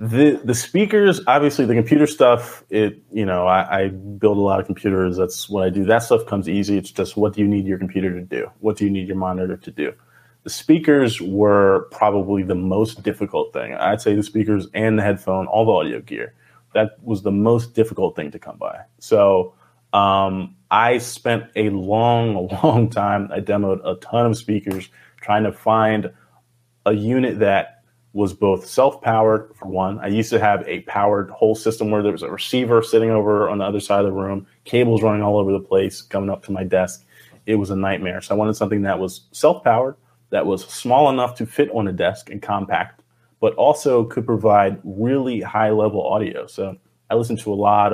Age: 30-49